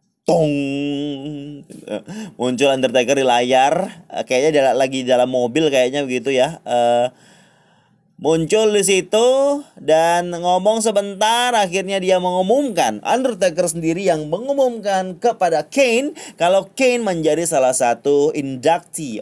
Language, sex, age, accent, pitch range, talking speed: Indonesian, male, 30-49, native, 130-200 Hz, 110 wpm